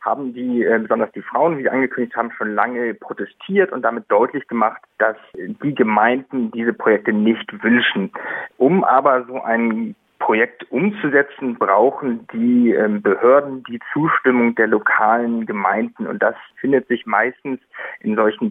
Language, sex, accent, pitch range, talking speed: German, male, German, 115-145 Hz, 145 wpm